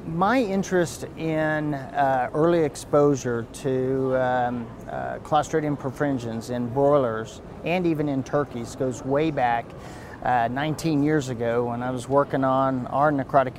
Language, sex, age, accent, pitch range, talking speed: English, male, 40-59, American, 130-155 Hz, 135 wpm